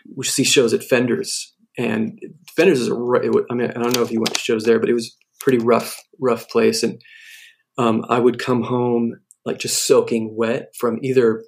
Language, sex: English, male